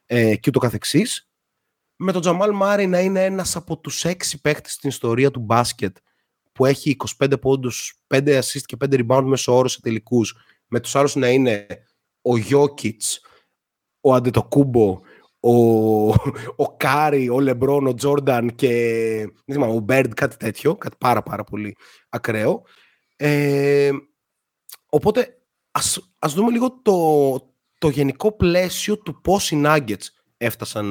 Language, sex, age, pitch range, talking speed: Greek, male, 30-49, 120-170 Hz, 130 wpm